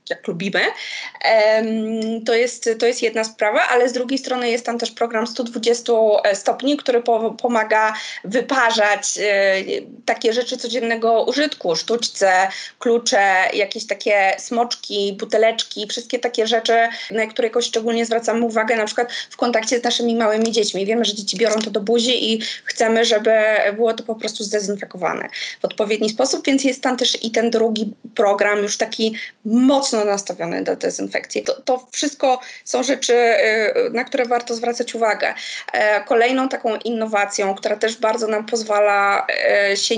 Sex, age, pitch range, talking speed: female, 20-39, 220-250 Hz, 150 wpm